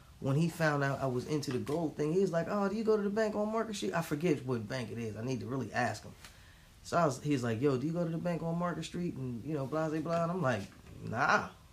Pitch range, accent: 115-185 Hz, American